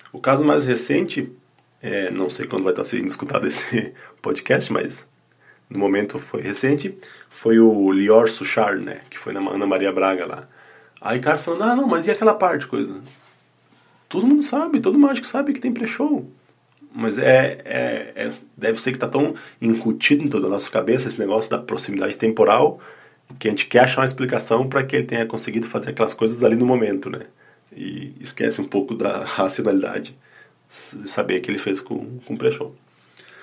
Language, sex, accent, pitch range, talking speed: Portuguese, male, Brazilian, 105-145 Hz, 190 wpm